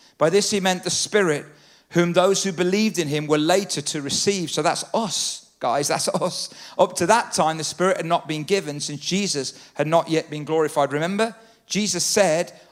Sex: male